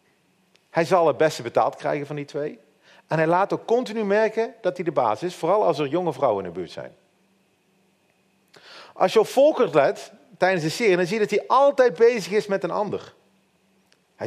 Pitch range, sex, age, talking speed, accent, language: 155-210 Hz, male, 40-59, 205 wpm, Dutch, Dutch